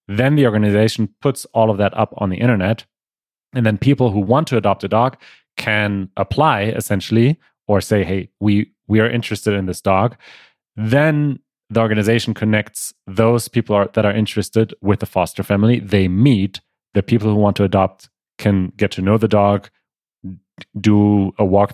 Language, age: English, 30-49